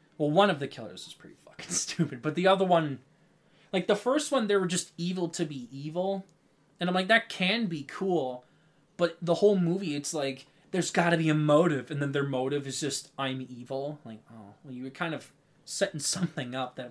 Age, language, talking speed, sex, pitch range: 20-39, English, 215 wpm, male, 135-175 Hz